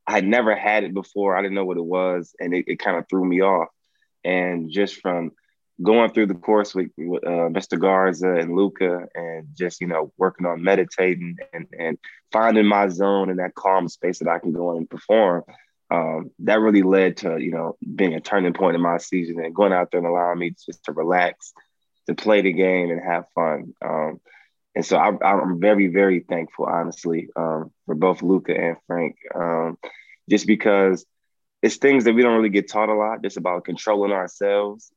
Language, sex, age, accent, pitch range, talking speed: English, male, 20-39, American, 85-105 Hz, 200 wpm